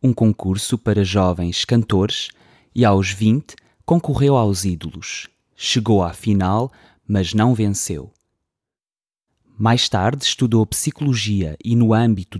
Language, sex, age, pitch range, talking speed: English, male, 20-39, 100-125 Hz, 115 wpm